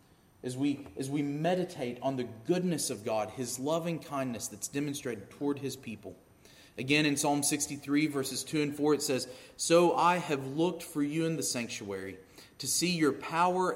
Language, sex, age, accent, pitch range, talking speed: English, male, 30-49, American, 125-170 Hz, 180 wpm